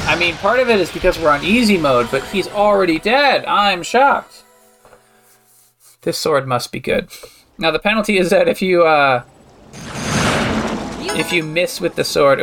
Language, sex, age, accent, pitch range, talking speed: English, male, 20-39, American, 135-205 Hz, 175 wpm